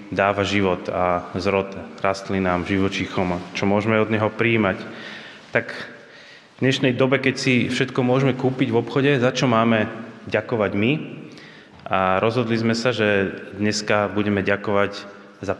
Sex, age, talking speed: male, 20-39, 145 wpm